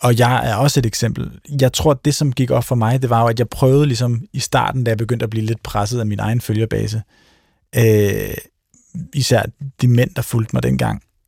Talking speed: 230 wpm